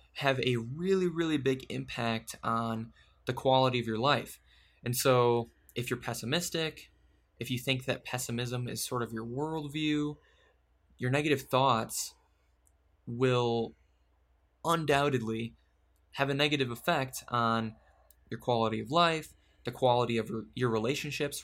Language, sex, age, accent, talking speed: English, male, 20-39, American, 130 wpm